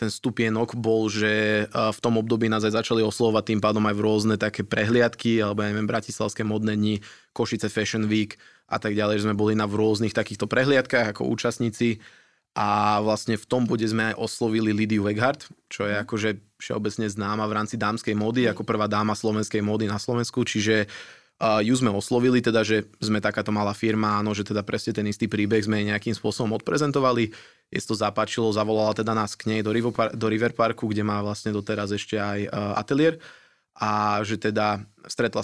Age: 20-39